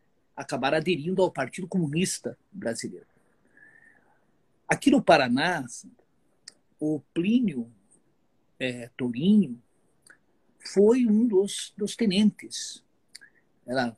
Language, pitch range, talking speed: Portuguese, 150-205 Hz, 80 wpm